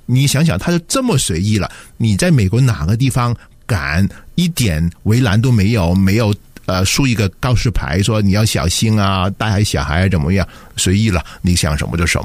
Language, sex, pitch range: Chinese, male, 95-125 Hz